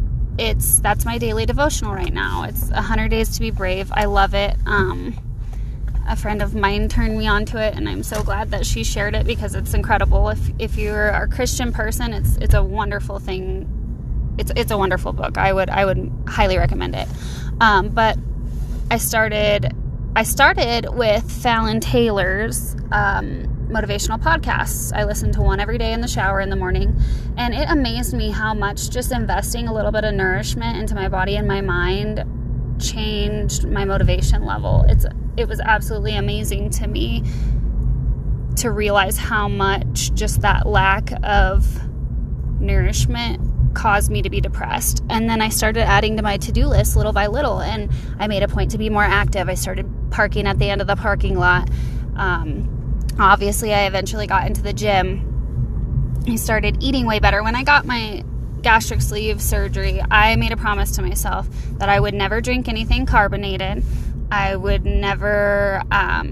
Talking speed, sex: 175 wpm, female